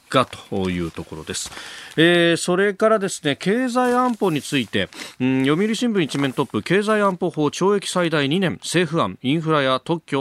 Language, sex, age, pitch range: Japanese, male, 40-59, 100-165 Hz